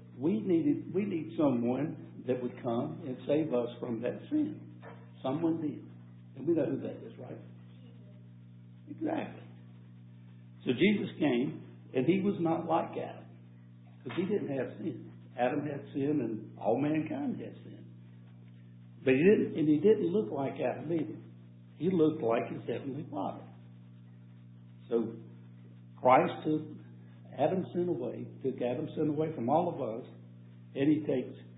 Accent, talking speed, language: American, 150 wpm, English